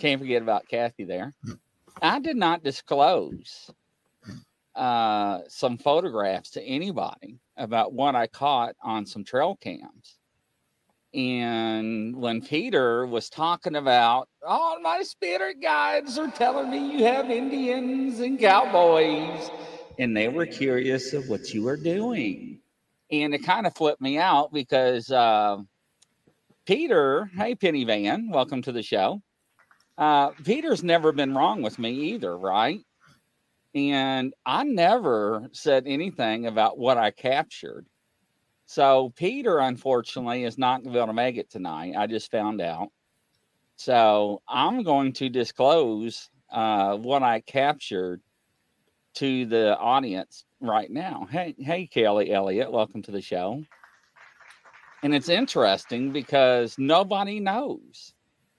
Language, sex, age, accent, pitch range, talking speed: English, male, 40-59, American, 120-190 Hz, 130 wpm